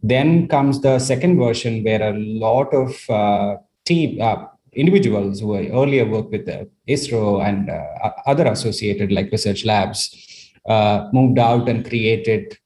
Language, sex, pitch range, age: English, male, 105-125 Hz, 30-49